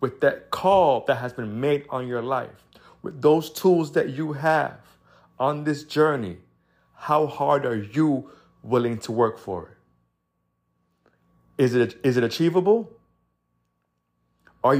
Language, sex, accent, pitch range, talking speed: English, male, American, 80-125 Hz, 135 wpm